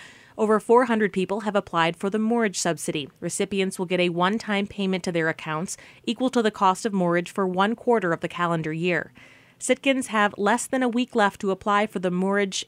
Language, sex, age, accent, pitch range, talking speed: English, female, 30-49, American, 175-210 Hz, 210 wpm